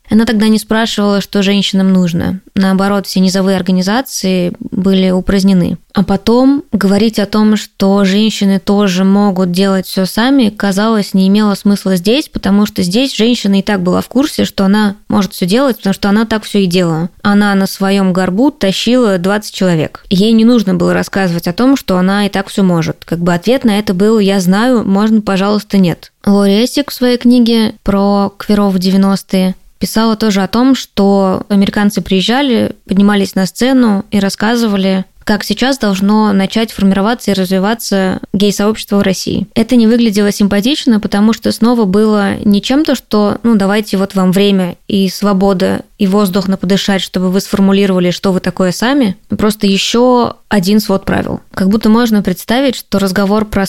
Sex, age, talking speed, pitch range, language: female, 20-39, 170 wpm, 195-220 Hz, Russian